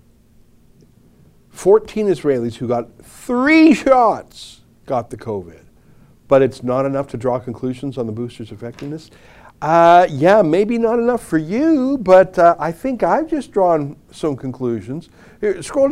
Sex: male